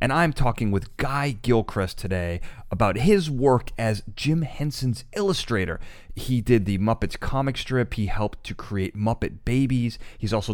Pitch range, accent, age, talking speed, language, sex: 100-135 Hz, American, 30-49, 160 wpm, English, male